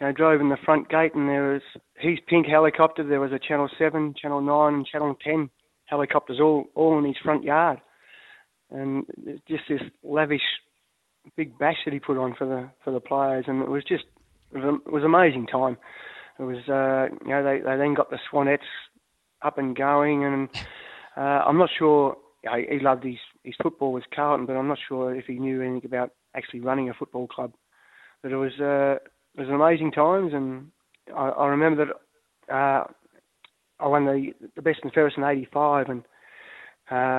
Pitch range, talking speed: 135-155 Hz, 195 wpm